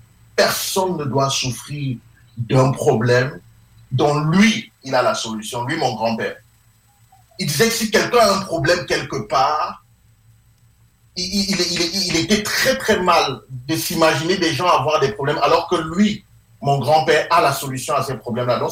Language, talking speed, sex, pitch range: English, 165 wpm, male, 115-180 Hz